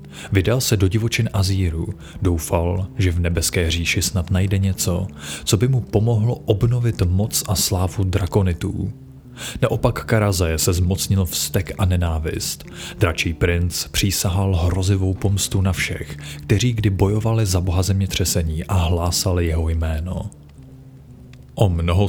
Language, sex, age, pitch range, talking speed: Czech, male, 30-49, 90-105 Hz, 130 wpm